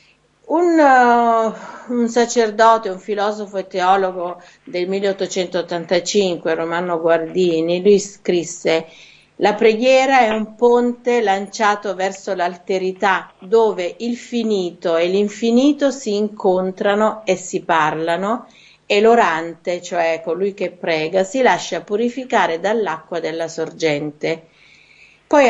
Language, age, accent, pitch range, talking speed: Italian, 50-69, native, 170-225 Hz, 105 wpm